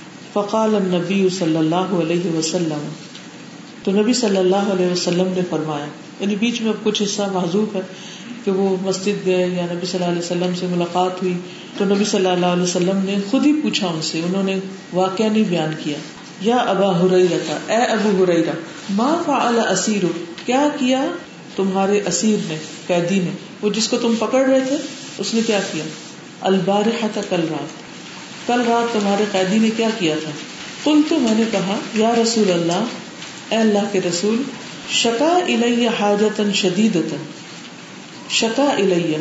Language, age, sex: Urdu, 40-59, female